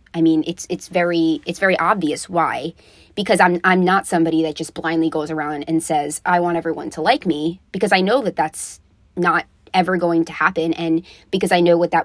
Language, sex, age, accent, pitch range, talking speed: English, female, 20-39, American, 155-180 Hz, 215 wpm